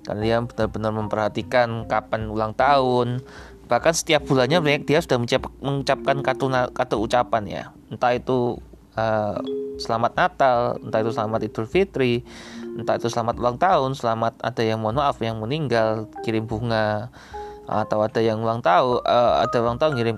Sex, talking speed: male, 155 wpm